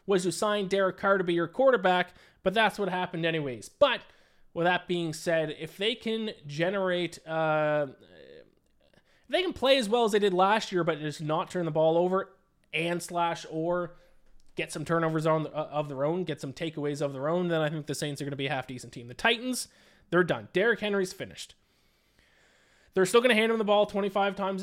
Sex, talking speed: male, 210 wpm